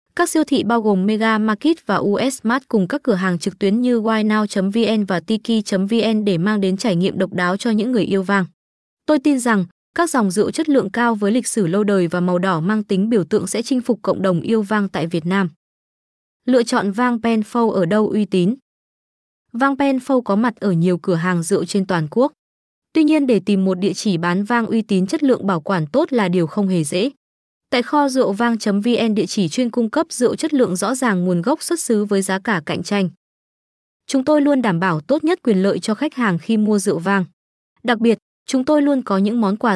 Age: 20-39